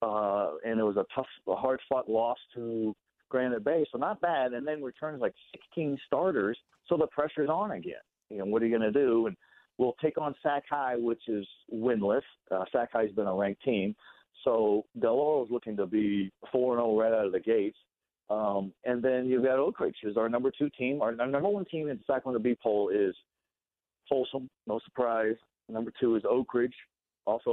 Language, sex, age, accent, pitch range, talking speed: English, male, 50-69, American, 105-135 Hz, 205 wpm